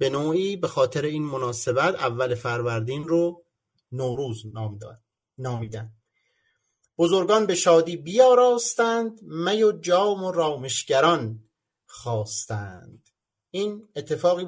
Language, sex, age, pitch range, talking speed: Persian, male, 30-49, 125-200 Hz, 100 wpm